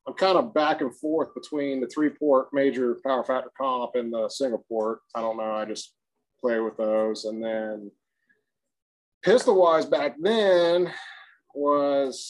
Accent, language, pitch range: American, English, 120-150 Hz